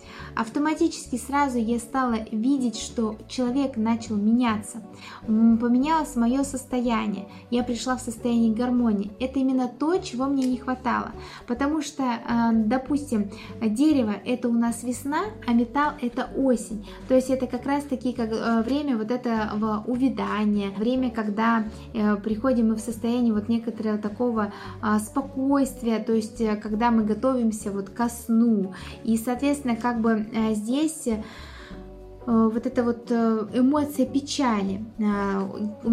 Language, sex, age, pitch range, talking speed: Russian, female, 20-39, 220-255 Hz, 130 wpm